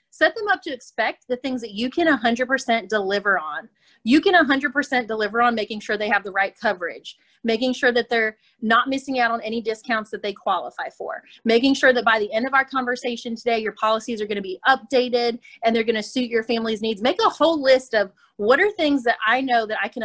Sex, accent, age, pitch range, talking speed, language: female, American, 30-49, 215-270 Hz, 235 wpm, English